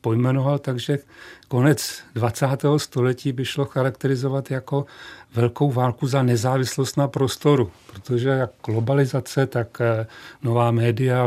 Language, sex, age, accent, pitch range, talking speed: Czech, male, 40-59, native, 125-145 Hz, 105 wpm